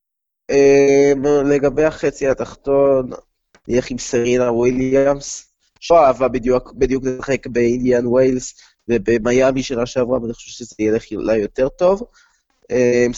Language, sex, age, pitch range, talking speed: Hebrew, male, 20-39, 120-140 Hz, 115 wpm